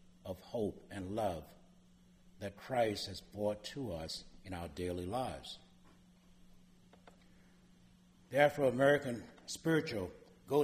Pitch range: 90-145 Hz